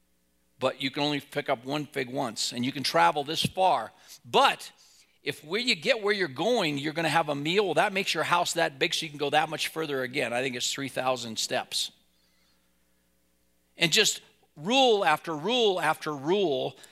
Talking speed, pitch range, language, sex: 200 wpm, 130-185 Hz, English, male